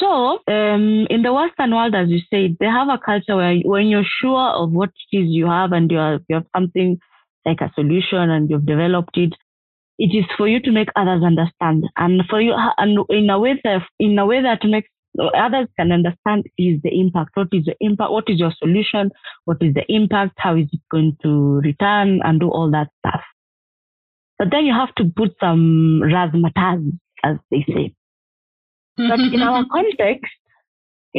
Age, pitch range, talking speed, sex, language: 20-39, 165-205 Hz, 190 wpm, female, English